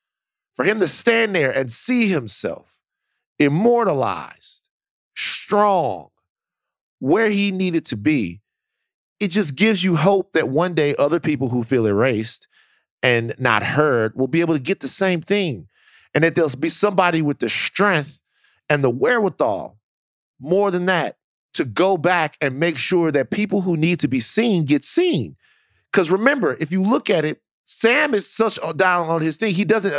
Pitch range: 140-205 Hz